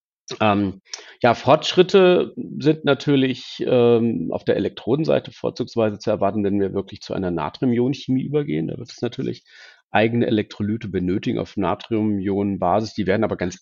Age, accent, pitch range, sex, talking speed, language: 40-59, German, 100-120 Hz, male, 150 wpm, German